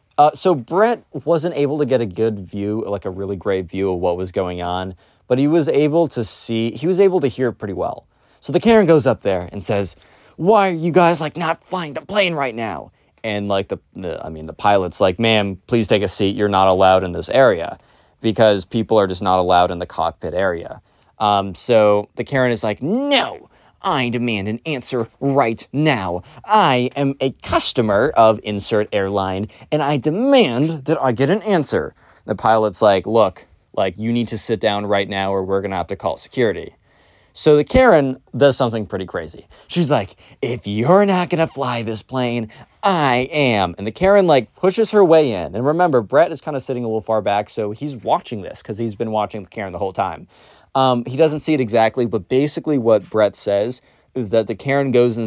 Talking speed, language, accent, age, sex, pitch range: 215 wpm, English, American, 20-39, male, 105-155 Hz